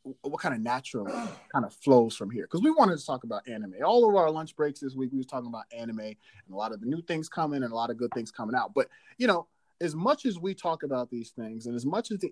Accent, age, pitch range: American, 30-49, 120-195 Hz